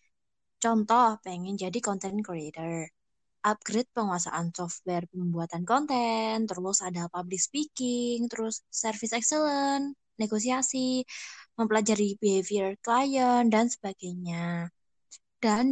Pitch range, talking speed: 200-245 Hz, 90 wpm